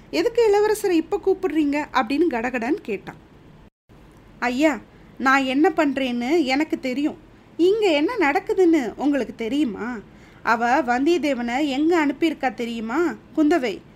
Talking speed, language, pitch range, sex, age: 105 wpm, Tamil, 235-330 Hz, female, 20-39